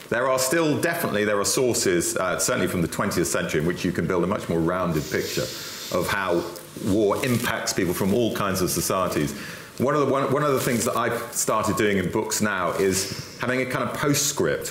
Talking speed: 220 wpm